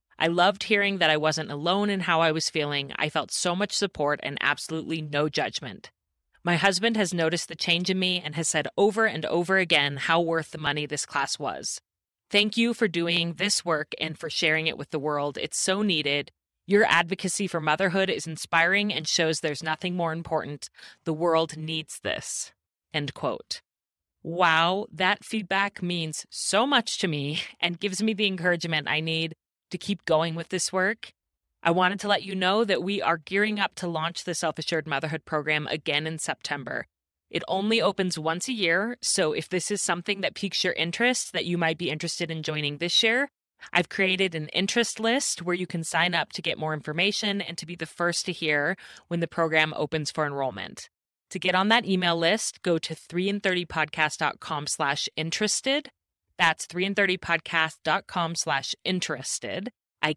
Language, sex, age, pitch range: English, female, 30-49, 160-195 Hz